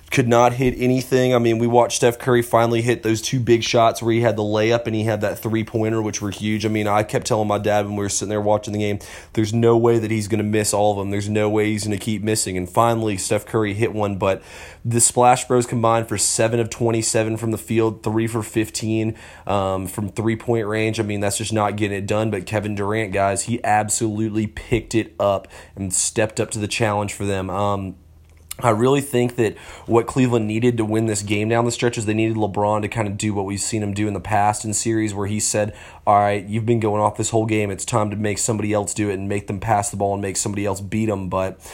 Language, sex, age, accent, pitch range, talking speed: English, male, 30-49, American, 100-115 Hz, 255 wpm